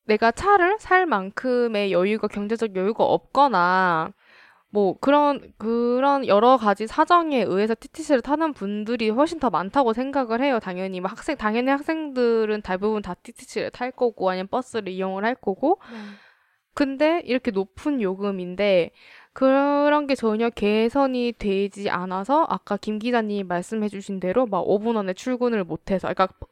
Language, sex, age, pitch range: Korean, female, 20-39, 190-245 Hz